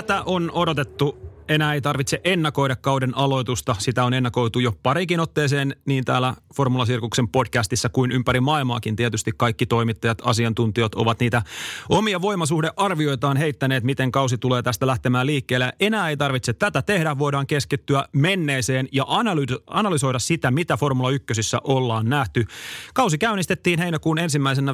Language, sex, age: Finnish, male, 30-49